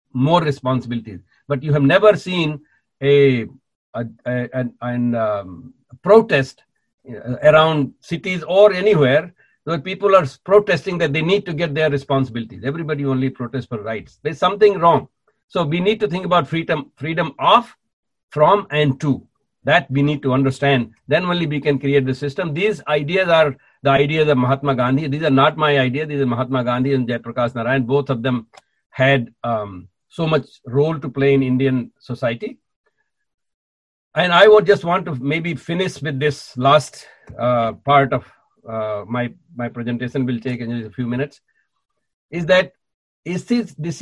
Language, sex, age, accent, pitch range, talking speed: English, male, 60-79, Indian, 125-170 Hz, 170 wpm